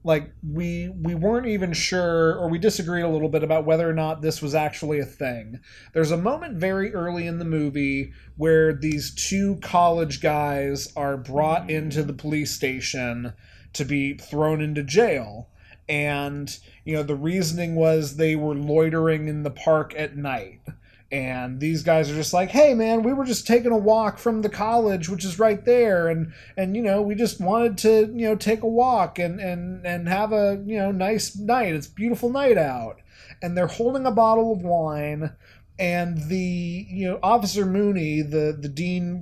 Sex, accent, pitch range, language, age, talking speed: male, American, 145-185 Hz, English, 30-49, 185 wpm